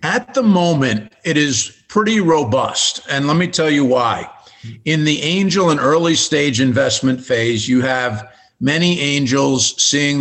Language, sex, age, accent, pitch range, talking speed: English, male, 50-69, American, 120-140 Hz, 155 wpm